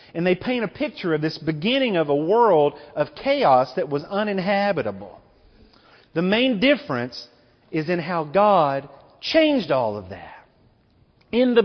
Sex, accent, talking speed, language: male, American, 150 wpm, English